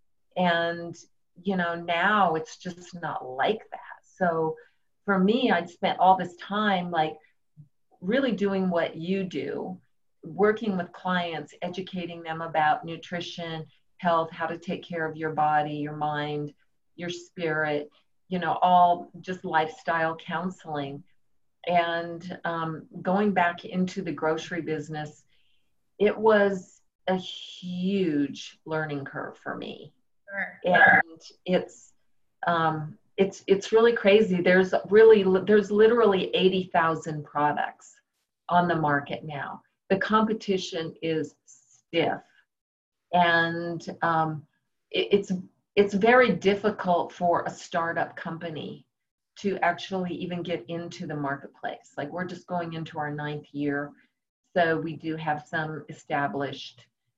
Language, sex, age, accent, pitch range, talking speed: English, female, 40-59, American, 155-185 Hz, 125 wpm